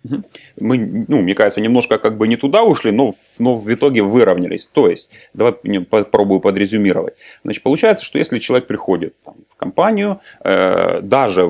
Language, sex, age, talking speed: Ukrainian, male, 30-49, 155 wpm